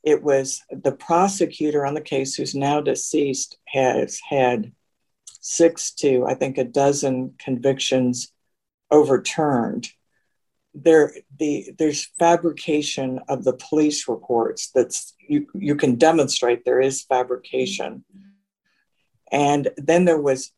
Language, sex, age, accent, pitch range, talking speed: English, female, 60-79, American, 130-155 Hz, 115 wpm